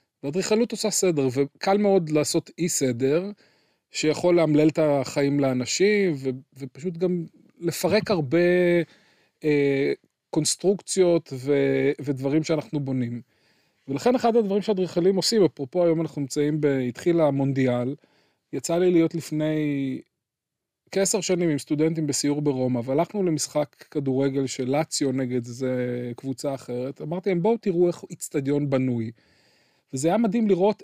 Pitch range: 140-185 Hz